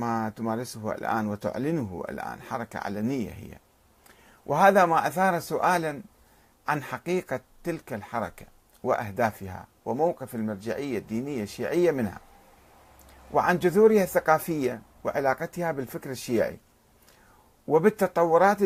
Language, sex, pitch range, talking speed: Arabic, male, 105-150 Hz, 95 wpm